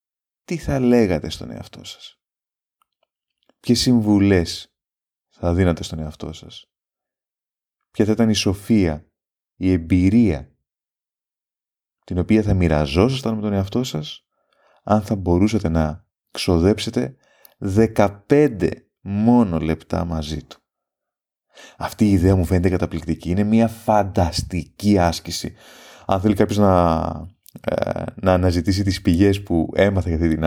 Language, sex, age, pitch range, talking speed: Greek, male, 30-49, 80-100 Hz, 120 wpm